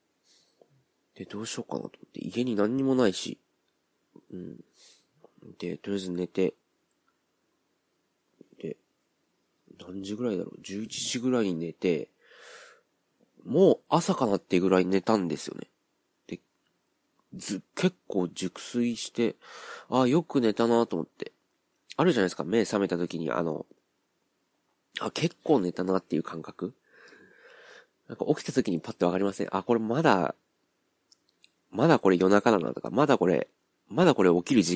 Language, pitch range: Japanese, 90-125 Hz